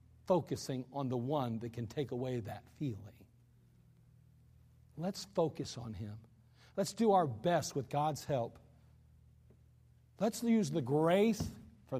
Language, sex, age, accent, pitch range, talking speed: English, male, 50-69, American, 115-145 Hz, 130 wpm